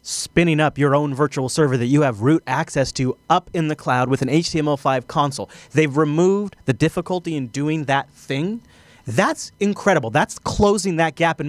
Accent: American